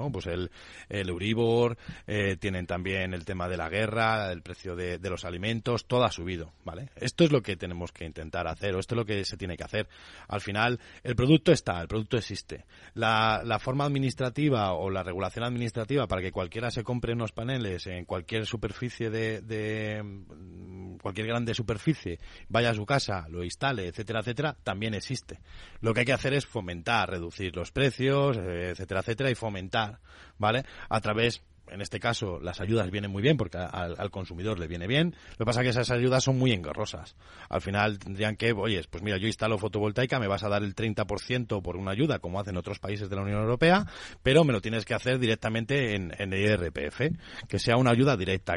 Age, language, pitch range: 30-49, Spanish, 90-120 Hz